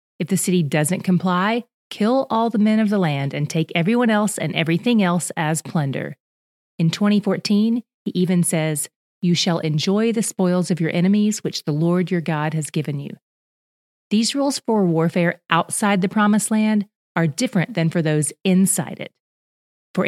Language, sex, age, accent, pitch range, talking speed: English, female, 30-49, American, 160-205 Hz, 175 wpm